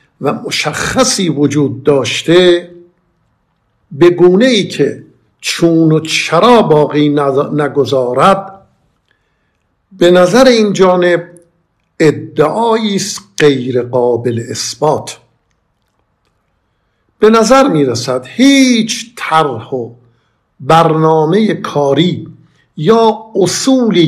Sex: male